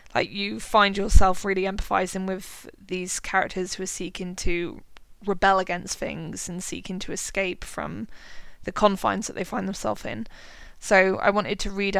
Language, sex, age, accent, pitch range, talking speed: English, female, 20-39, British, 190-215 Hz, 165 wpm